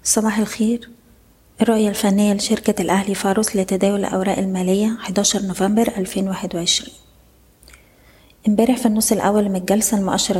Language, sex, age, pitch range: Arabic, female, 20-39, 185-205 Hz